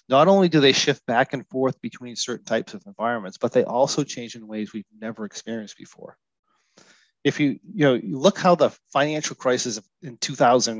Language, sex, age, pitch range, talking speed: English, male, 30-49, 115-150 Hz, 200 wpm